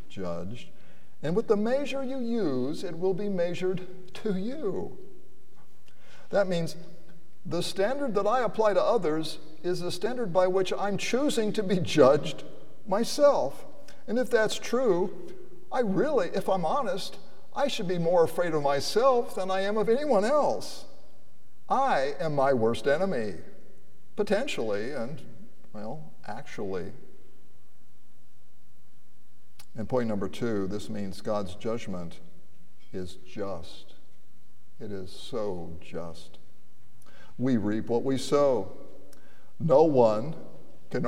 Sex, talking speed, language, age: male, 125 wpm, English, 50-69